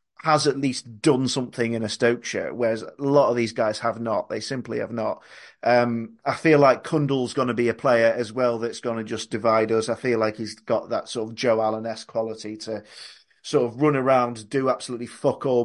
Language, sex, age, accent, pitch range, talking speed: English, male, 30-49, British, 115-150 Hz, 230 wpm